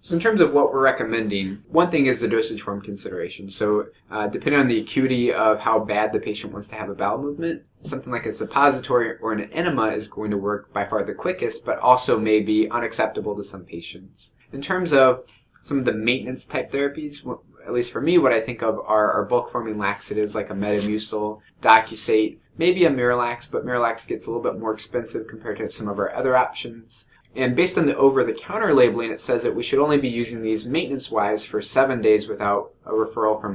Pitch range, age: 105-135 Hz, 20-39